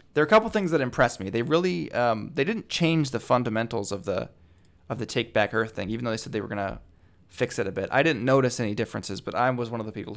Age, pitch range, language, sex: 20-39, 100-125 Hz, English, male